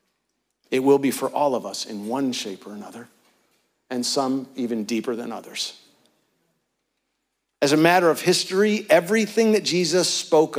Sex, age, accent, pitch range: male, 50-69, American, 130-180 Hz